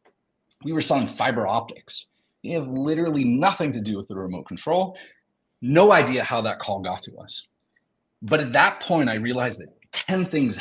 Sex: male